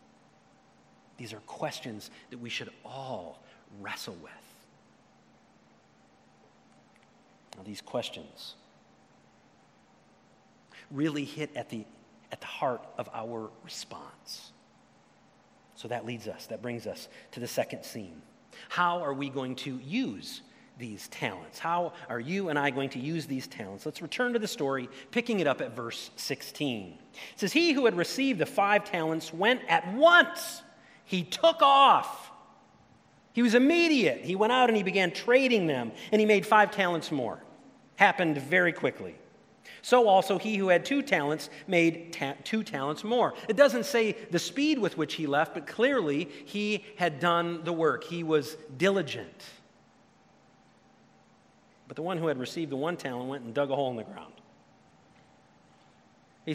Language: English